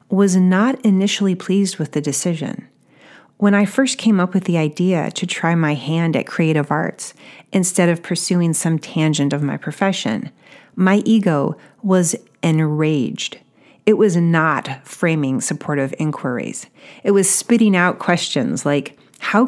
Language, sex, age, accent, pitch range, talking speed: English, female, 40-59, American, 155-195 Hz, 145 wpm